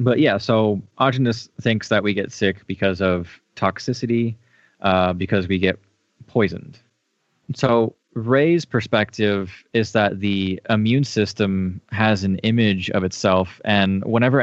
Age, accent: 20-39, American